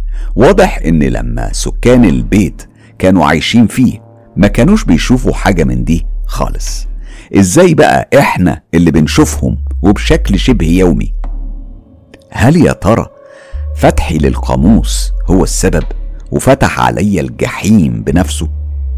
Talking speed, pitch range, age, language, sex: 110 wpm, 65-95 Hz, 50-69, Arabic, male